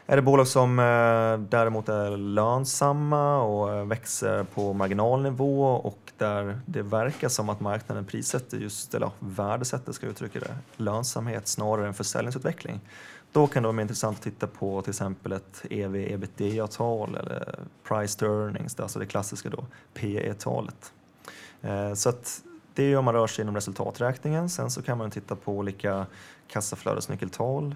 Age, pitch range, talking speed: 20-39, 100-125 Hz, 150 wpm